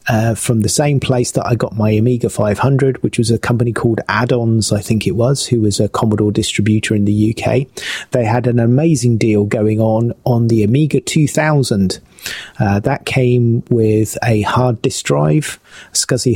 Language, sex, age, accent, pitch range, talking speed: English, male, 30-49, British, 110-125 Hz, 180 wpm